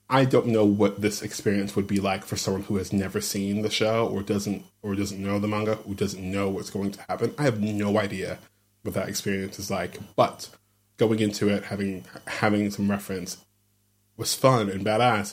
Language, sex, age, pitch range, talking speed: English, male, 20-39, 100-105 Hz, 205 wpm